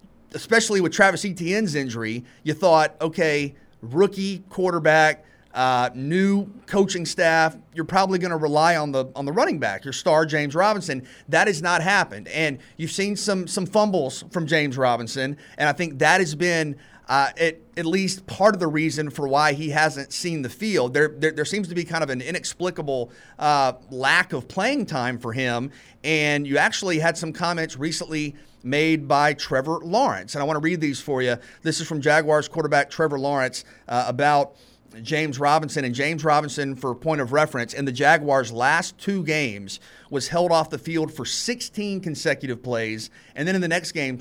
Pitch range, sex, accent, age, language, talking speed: 135-170 Hz, male, American, 30-49, English, 190 wpm